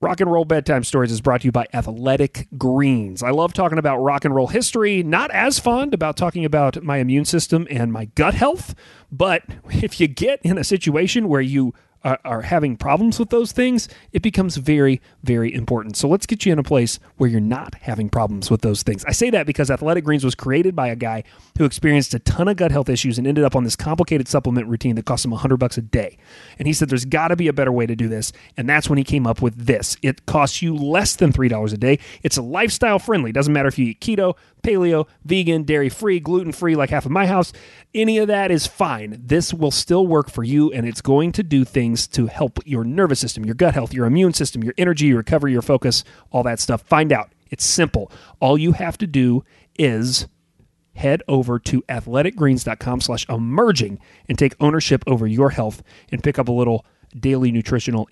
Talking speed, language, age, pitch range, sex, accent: 225 wpm, English, 30-49, 120-165 Hz, male, American